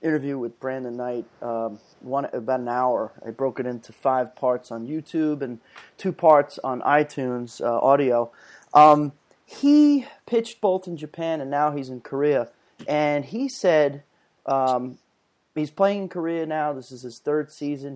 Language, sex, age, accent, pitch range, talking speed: English, male, 30-49, American, 125-160 Hz, 165 wpm